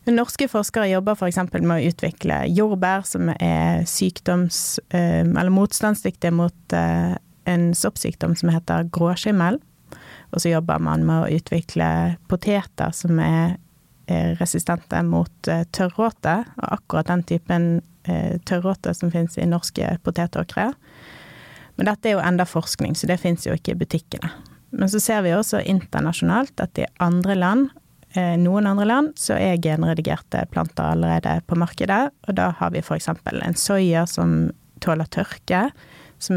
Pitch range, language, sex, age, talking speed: 165-190 Hz, English, female, 30-49, 150 wpm